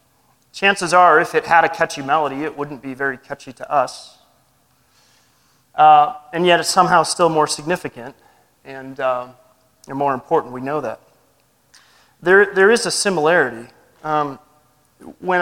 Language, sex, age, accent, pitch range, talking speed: English, male, 30-49, American, 140-180 Hz, 150 wpm